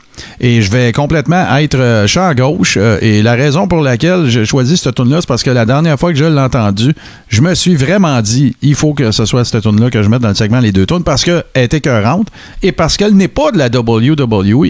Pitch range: 115-170 Hz